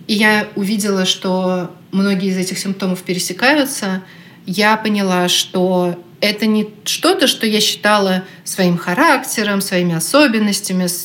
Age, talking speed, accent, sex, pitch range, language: 30-49, 120 wpm, native, female, 175-210 Hz, Russian